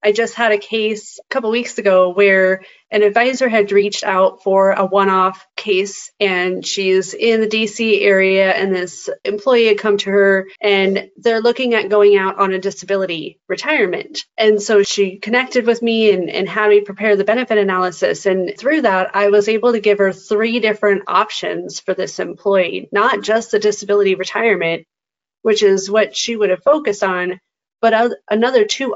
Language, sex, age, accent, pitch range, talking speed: English, female, 30-49, American, 195-220 Hz, 180 wpm